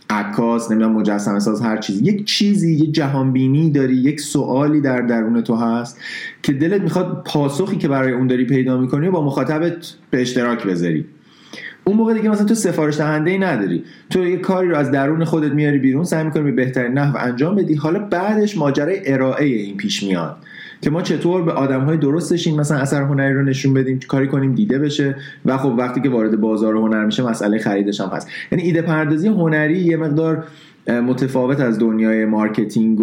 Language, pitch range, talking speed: Persian, 125-160 Hz, 195 wpm